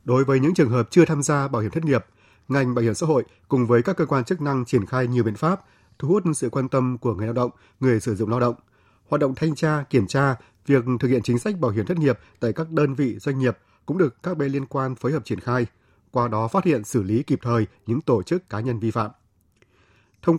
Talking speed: 265 wpm